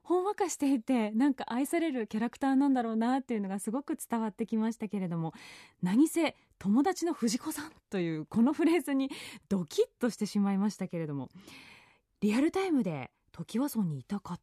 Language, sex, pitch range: Japanese, female, 195-295 Hz